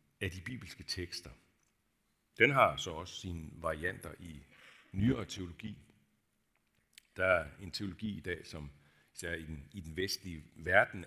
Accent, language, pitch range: native, Danish, 85-115 Hz